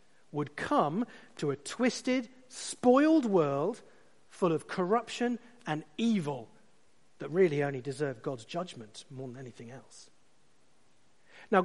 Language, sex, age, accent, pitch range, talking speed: English, male, 40-59, British, 170-245 Hz, 120 wpm